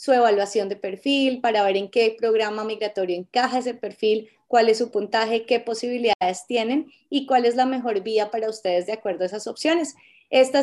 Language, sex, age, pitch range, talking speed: Spanish, female, 20-39, 210-255 Hz, 190 wpm